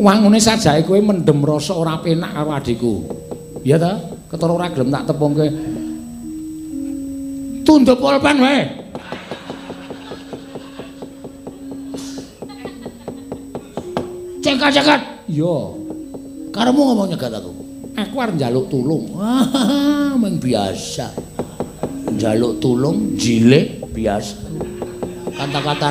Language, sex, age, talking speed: Indonesian, male, 50-69, 85 wpm